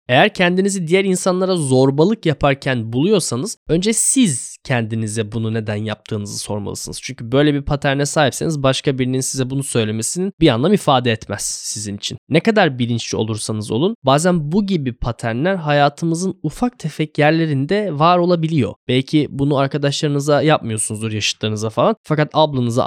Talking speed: 140 wpm